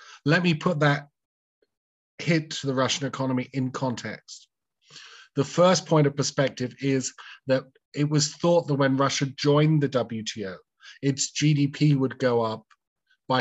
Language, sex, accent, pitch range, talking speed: Portuguese, male, British, 115-145 Hz, 150 wpm